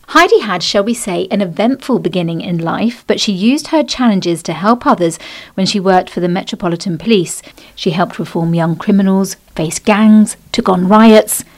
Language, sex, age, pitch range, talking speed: English, female, 50-69, 170-215 Hz, 180 wpm